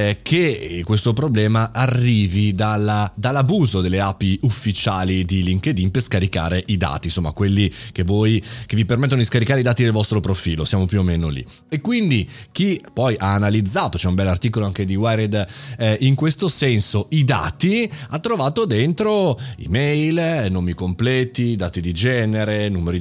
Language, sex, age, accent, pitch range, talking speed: Italian, male, 30-49, native, 95-130 Hz, 165 wpm